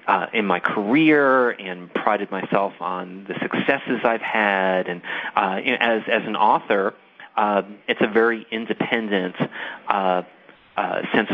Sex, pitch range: male, 95-120 Hz